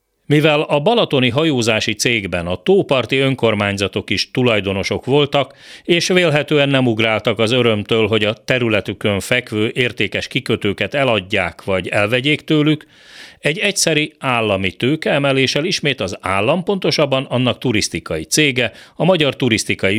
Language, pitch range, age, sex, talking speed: Hungarian, 100-145 Hz, 40-59, male, 125 wpm